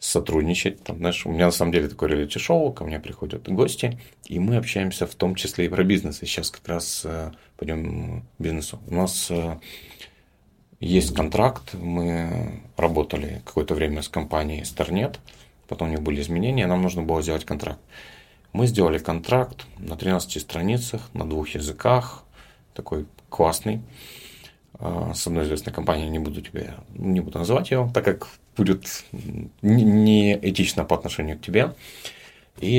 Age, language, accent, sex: 30-49, Russian, native, male